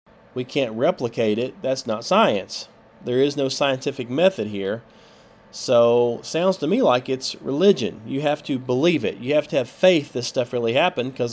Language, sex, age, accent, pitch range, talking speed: English, male, 30-49, American, 110-135 Hz, 185 wpm